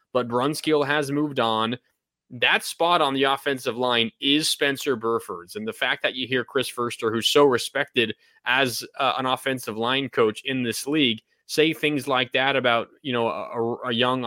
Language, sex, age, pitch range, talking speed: English, male, 20-39, 120-150 Hz, 185 wpm